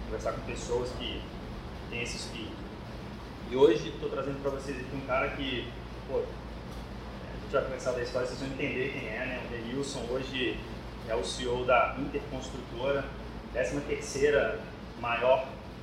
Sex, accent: male, Brazilian